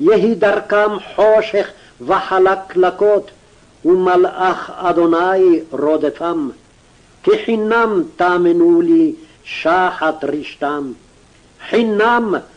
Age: 60-79